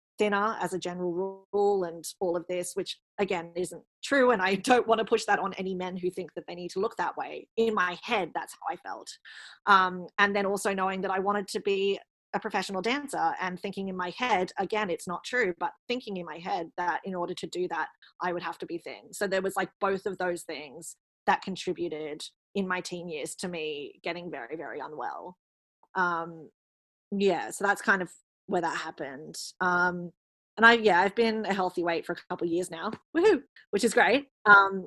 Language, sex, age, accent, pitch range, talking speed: English, female, 20-39, Australian, 175-210 Hz, 220 wpm